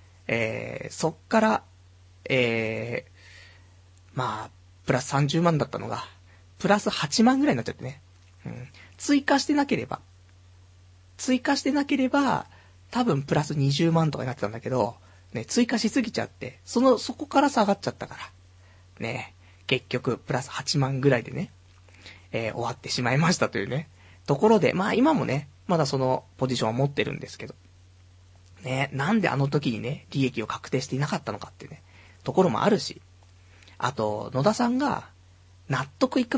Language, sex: Japanese, male